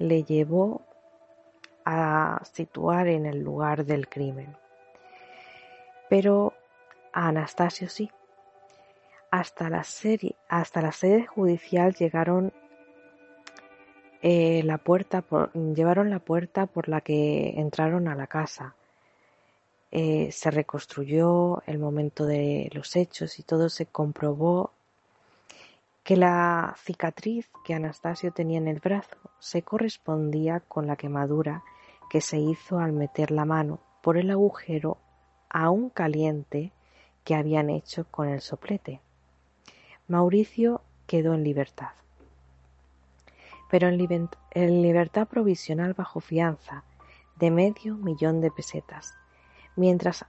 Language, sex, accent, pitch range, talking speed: Spanish, female, Spanish, 150-180 Hz, 115 wpm